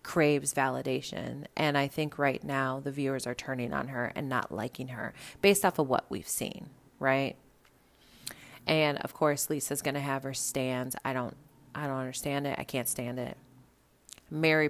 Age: 30-49